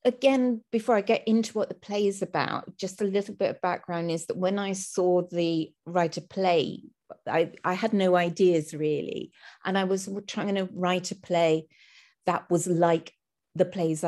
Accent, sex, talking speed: British, female, 185 wpm